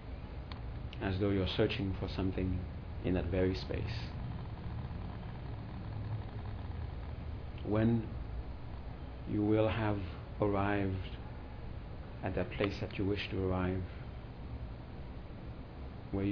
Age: 50-69